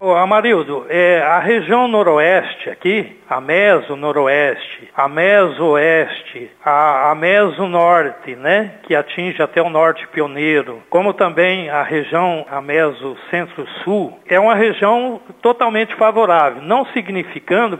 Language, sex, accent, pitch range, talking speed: Portuguese, male, Brazilian, 170-215 Hz, 105 wpm